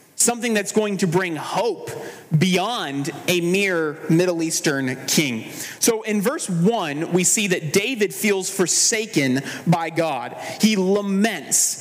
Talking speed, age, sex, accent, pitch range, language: 130 wpm, 30-49, male, American, 170-220 Hz, English